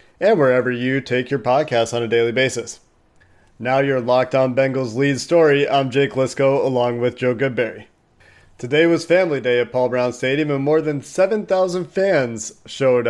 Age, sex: 30-49, male